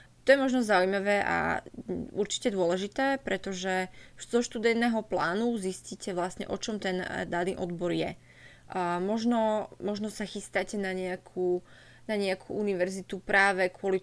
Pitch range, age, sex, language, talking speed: 185-210 Hz, 20-39, female, Slovak, 130 wpm